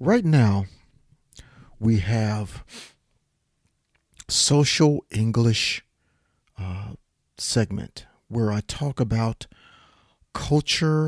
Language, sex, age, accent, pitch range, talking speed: English, male, 40-59, American, 100-135 Hz, 70 wpm